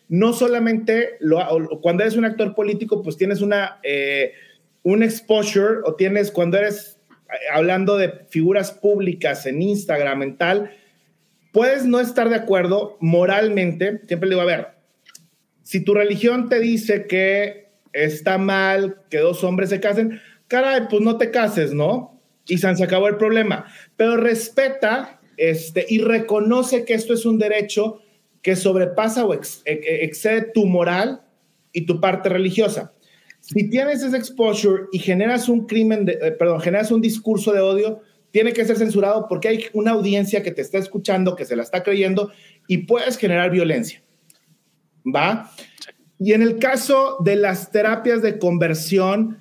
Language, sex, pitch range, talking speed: Spanish, male, 180-225 Hz, 160 wpm